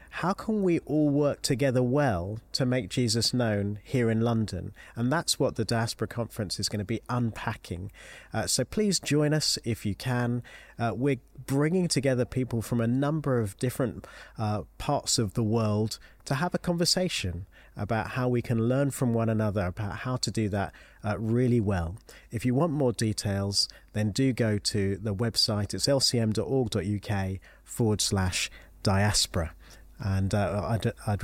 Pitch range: 100-125 Hz